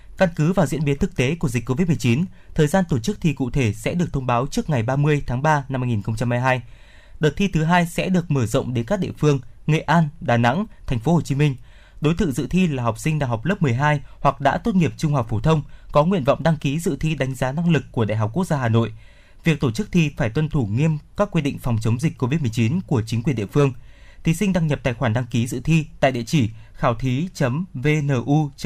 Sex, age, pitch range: male, 20-39, 120-165 Hz